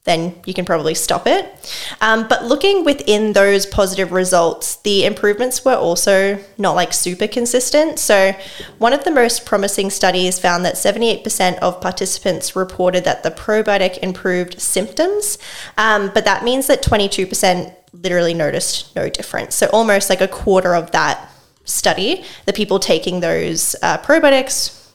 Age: 10-29